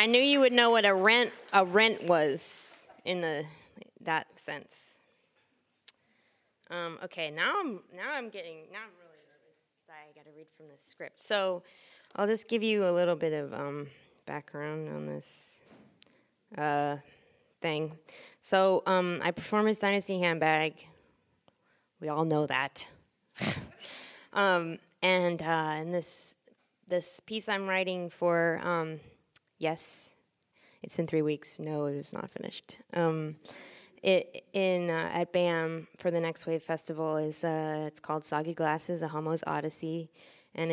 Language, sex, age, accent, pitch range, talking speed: English, female, 20-39, American, 155-185 Hz, 150 wpm